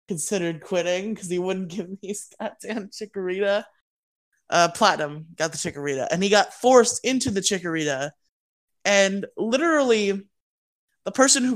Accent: American